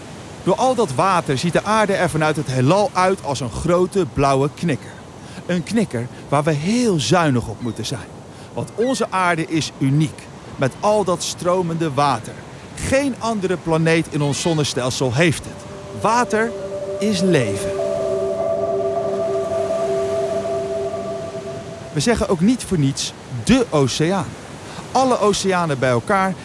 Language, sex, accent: Dutch, male, Dutch